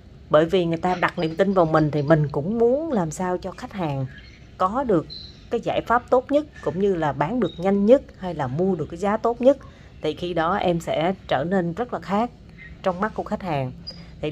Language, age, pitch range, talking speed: Vietnamese, 30-49, 150-195 Hz, 235 wpm